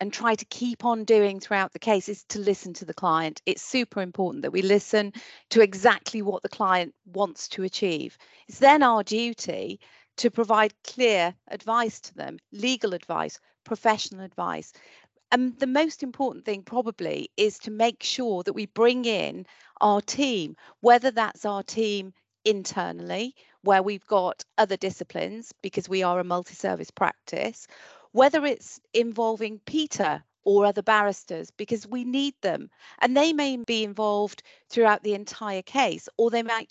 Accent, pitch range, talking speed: British, 195-235 Hz, 160 wpm